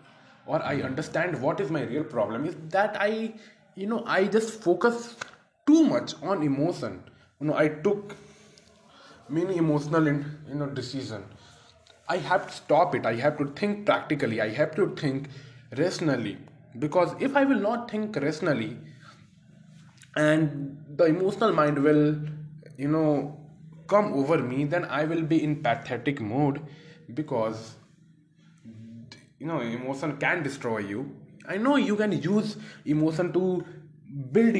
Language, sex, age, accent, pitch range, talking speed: Hindi, male, 20-39, native, 135-180 Hz, 150 wpm